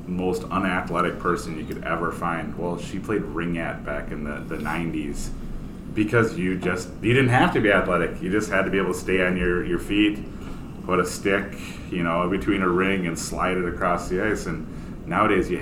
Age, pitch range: 30-49, 80-90 Hz